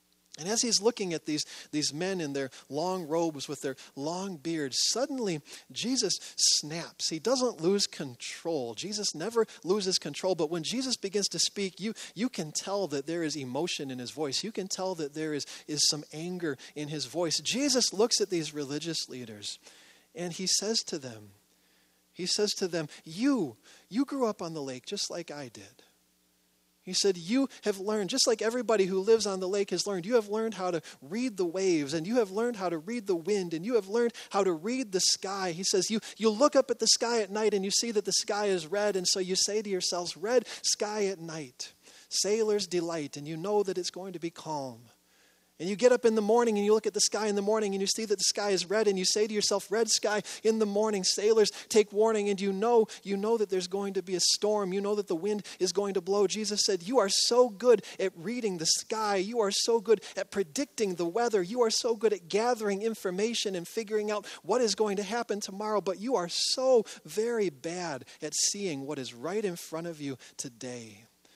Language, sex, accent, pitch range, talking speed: English, male, American, 165-220 Hz, 230 wpm